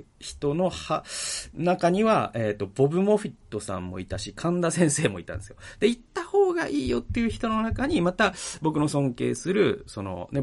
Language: Japanese